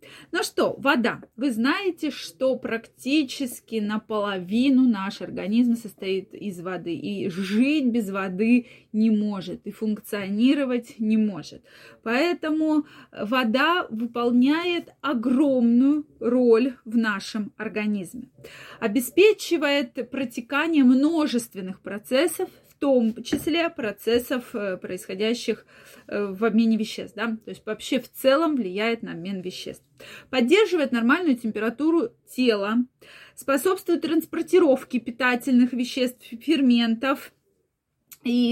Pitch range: 220-285 Hz